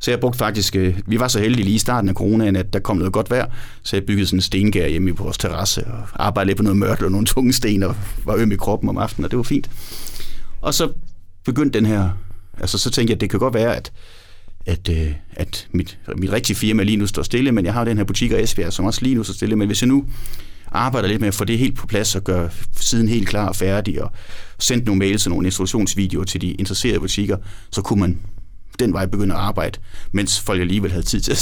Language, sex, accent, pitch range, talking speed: Danish, male, native, 90-110 Hz, 260 wpm